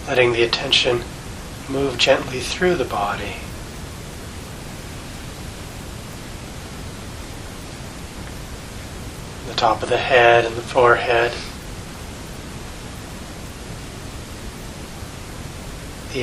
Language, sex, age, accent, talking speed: English, male, 40-59, American, 65 wpm